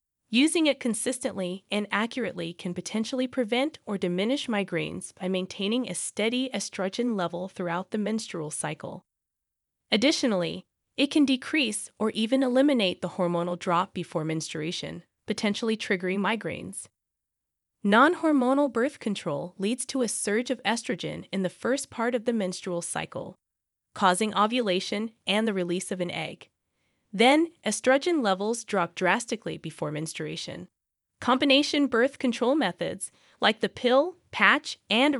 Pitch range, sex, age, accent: 180-250 Hz, female, 20-39, American